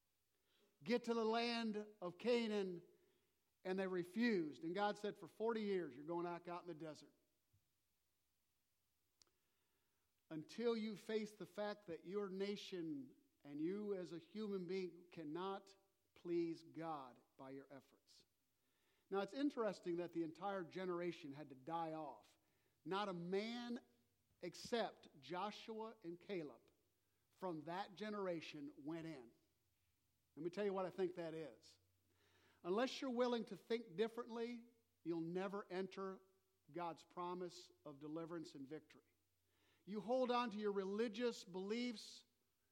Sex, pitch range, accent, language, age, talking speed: male, 160-215 Hz, American, English, 50-69, 135 wpm